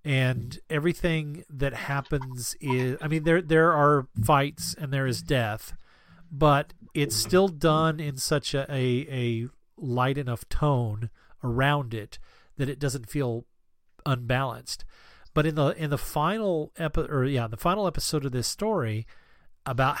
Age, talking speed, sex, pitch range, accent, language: 40-59, 150 wpm, male, 130-165 Hz, American, English